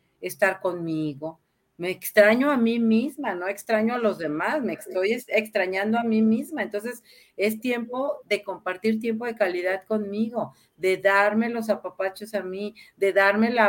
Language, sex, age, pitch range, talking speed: Spanish, female, 40-59, 190-225 Hz, 160 wpm